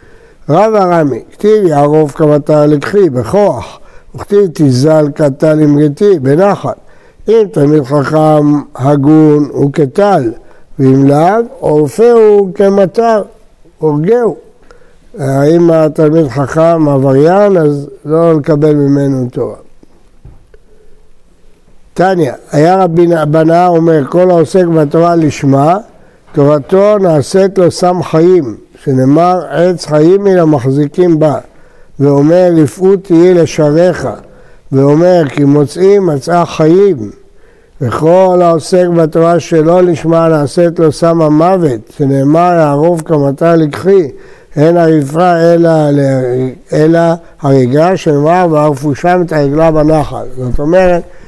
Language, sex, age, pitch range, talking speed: Hebrew, male, 60-79, 145-180 Hz, 100 wpm